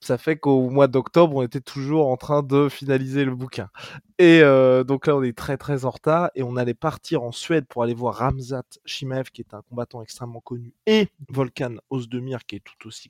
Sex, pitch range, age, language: male, 125-150 Hz, 20-39, French